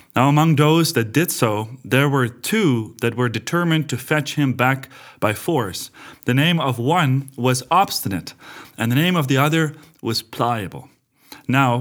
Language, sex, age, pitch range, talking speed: English, male, 30-49, 125-170 Hz, 170 wpm